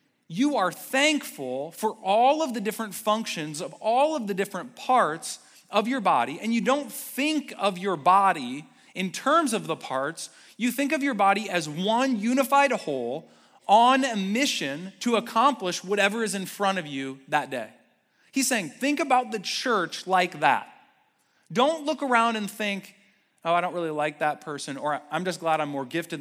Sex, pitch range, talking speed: male, 150-235 Hz, 180 wpm